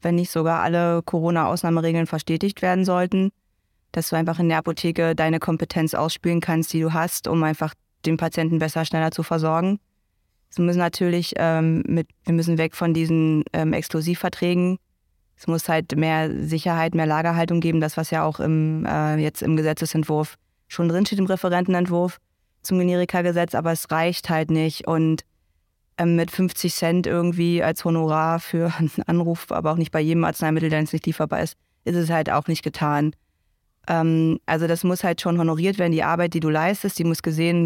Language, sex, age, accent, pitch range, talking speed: German, female, 20-39, German, 160-175 Hz, 175 wpm